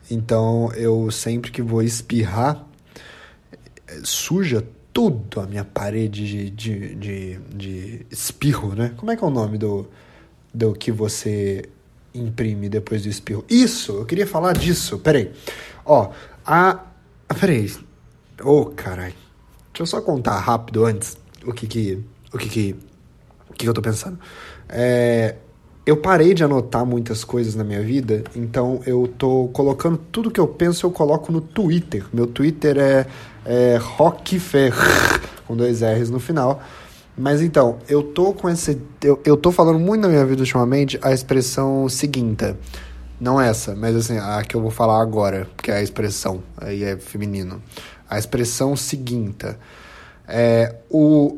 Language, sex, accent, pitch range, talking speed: Portuguese, male, Brazilian, 105-140 Hz, 155 wpm